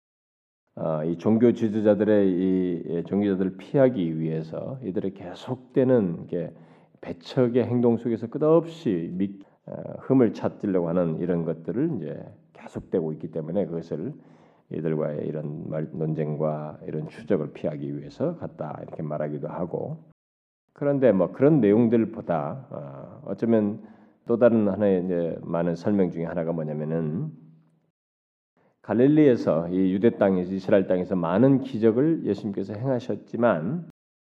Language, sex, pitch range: Korean, male, 85-130 Hz